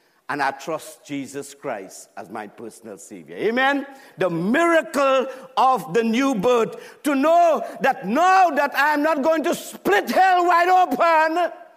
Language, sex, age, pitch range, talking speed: English, male, 50-69, 220-300 Hz, 150 wpm